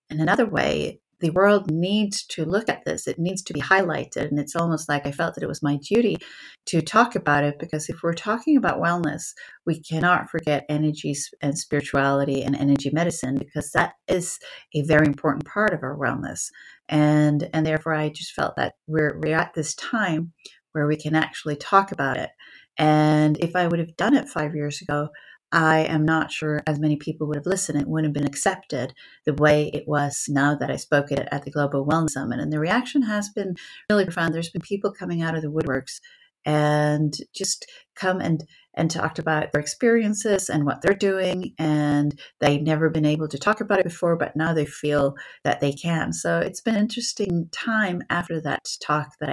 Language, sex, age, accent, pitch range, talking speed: English, female, 40-59, American, 145-175 Hz, 205 wpm